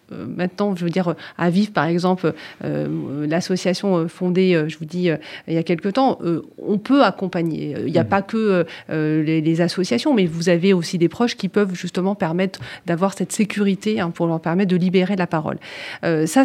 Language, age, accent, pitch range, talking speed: French, 40-59, French, 180-215 Hz, 200 wpm